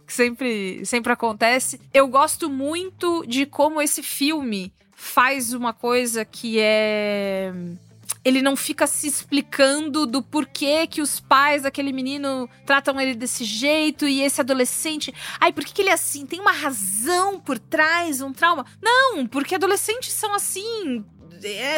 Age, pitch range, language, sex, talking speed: 20-39, 240-315 Hz, Portuguese, female, 145 wpm